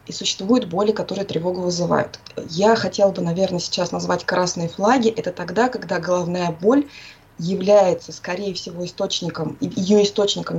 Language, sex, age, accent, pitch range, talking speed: Russian, female, 20-39, native, 175-215 Hz, 140 wpm